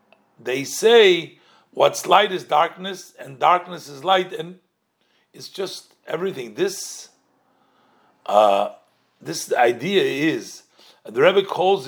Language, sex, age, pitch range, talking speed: English, male, 50-69, 150-195 Hz, 110 wpm